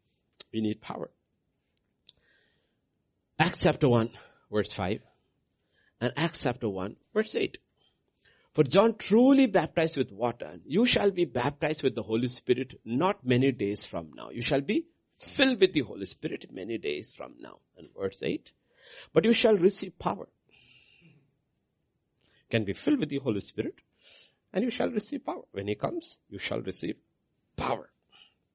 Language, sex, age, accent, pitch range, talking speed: English, male, 60-79, Indian, 100-165 Hz, 150 wpm